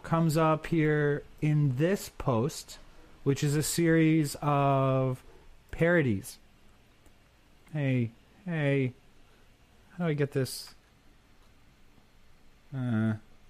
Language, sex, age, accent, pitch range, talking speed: English, male, 30-49, American, 130-155 Hz, 90 wpm